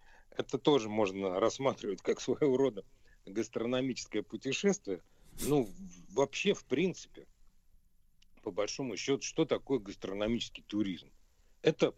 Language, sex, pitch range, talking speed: Russian, male, 110-135 Hz, 105 wpm